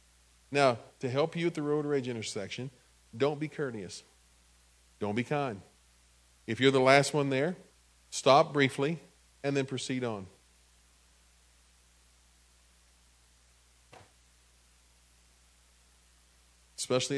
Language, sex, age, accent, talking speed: English, male, 40-59, American, 100 wpm